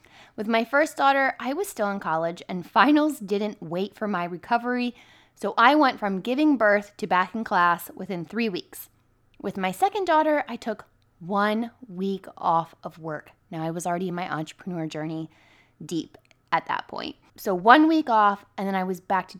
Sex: female